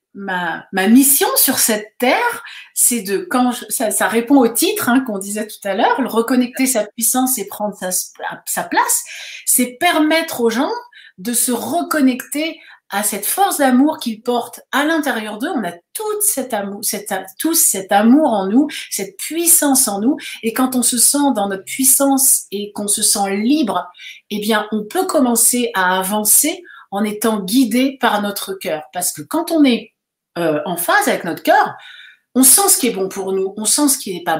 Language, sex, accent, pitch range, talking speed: French, female, French, 205-280 Hz, 190 wpm